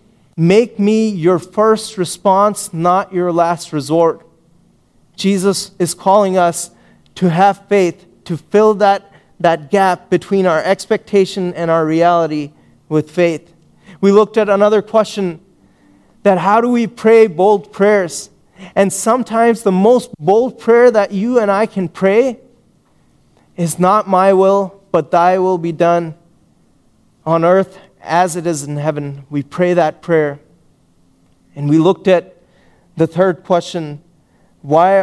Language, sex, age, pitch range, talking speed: English, male, 30-49, 165-205 Hz, 140 wpm